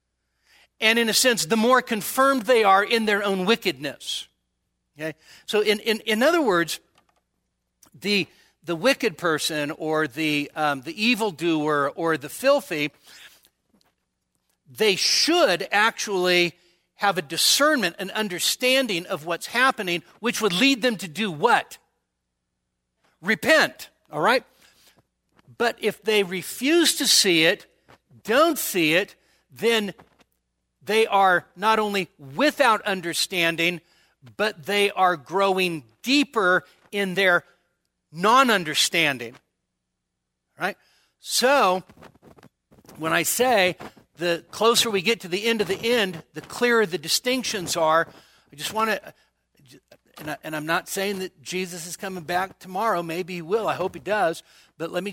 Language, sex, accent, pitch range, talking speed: English, male, American, 155-220 Hz, 130 wpm